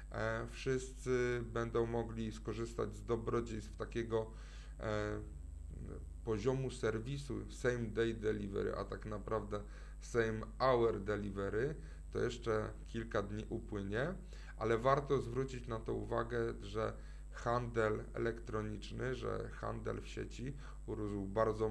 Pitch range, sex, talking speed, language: 105-125 Hz, male, 110 wpm, Polish